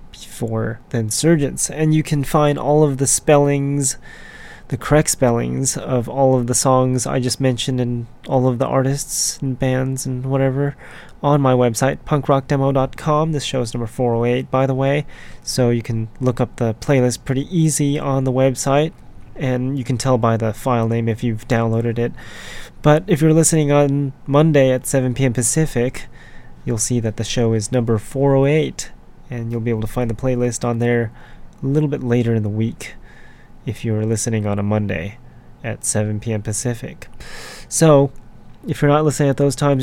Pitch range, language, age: 115-140 Hz, English, 20-39